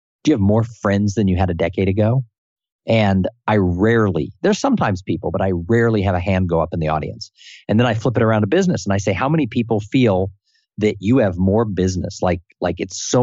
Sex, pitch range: male, 95-120 Hz